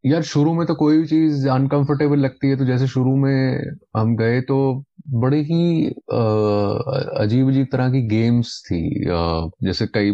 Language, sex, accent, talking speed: Hindi, male, native, 165 wpm